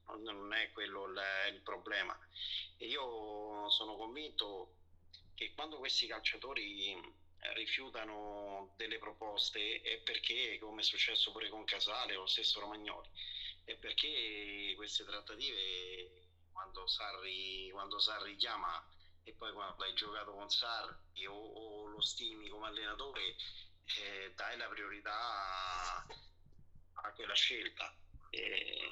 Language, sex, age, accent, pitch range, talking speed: Italian, male, 40-59, native, 95-110 Hz, 120 wpm